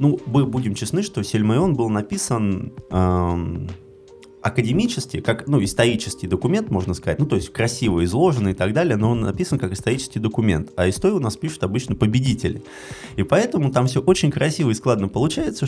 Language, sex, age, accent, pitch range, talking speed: Russian, male, 20-39, native, 100-145 Hz, 175 wpm